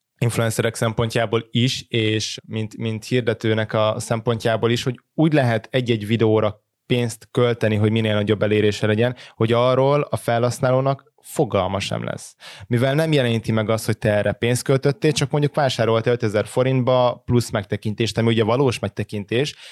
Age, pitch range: 20-39, 105-120 Hz